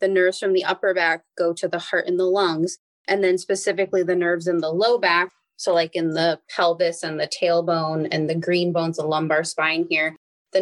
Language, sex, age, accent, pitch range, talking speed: English, female, 20-39, American, 170-190 Hz, 220 wpm